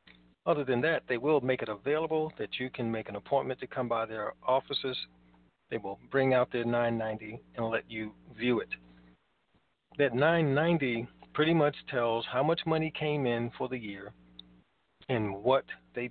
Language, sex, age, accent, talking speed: English, male, 40-59, American, 170 wpm